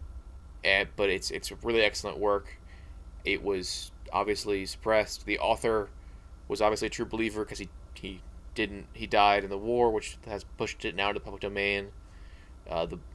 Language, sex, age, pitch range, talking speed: English, male, 20-39, 75-110 Hz, 165 wpm